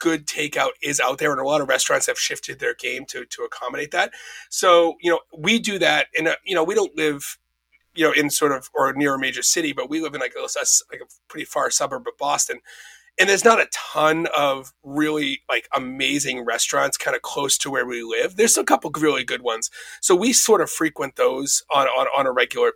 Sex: male